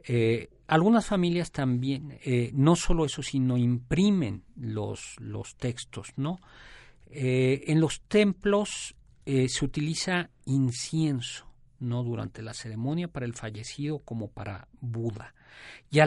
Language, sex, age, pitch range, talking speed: Spanish, male, 50-69, 115-145 Hz, 125 wpm